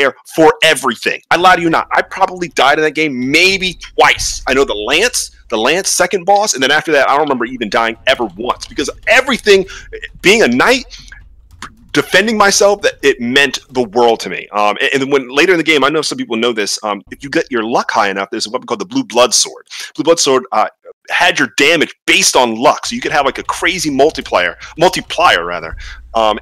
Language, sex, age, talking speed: English, male, 30-49, 225 wpm